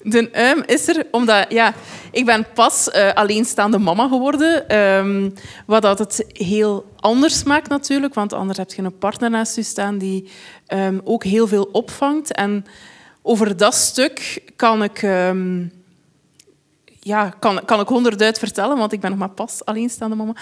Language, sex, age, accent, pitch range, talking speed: Dutch, female, 20-39, Dutch, 200-240 Hz, 170 wpm